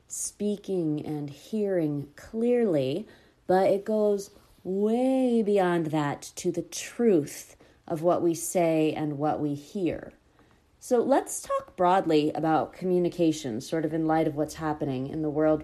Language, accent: English, American